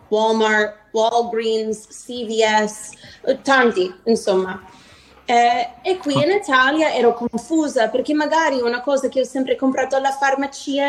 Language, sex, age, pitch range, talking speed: Italian, female, 30-49, 245-290 Hz, 120 wpm